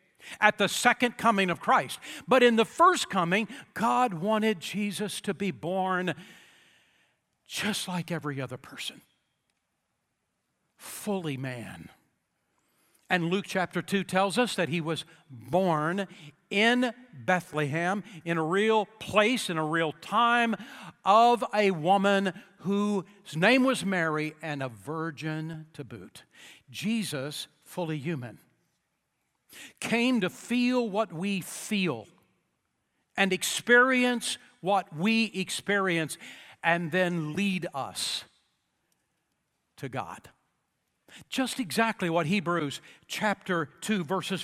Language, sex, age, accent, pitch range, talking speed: English, male, 60-79, American, 170-225 Hz, 110 wpm